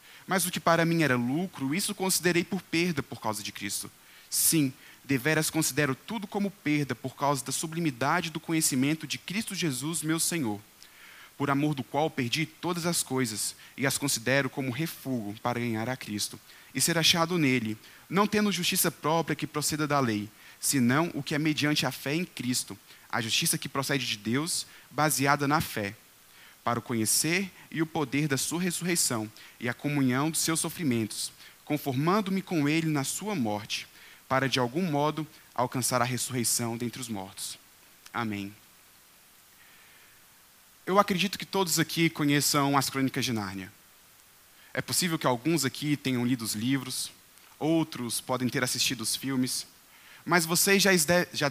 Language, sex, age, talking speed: Portuguese, male, 20-39, 160 wpm